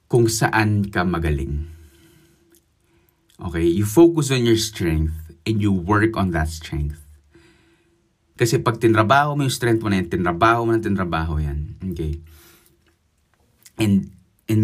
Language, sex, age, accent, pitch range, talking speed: Filipino, male, 20-39, native, 85-110 Hz, 130 wpm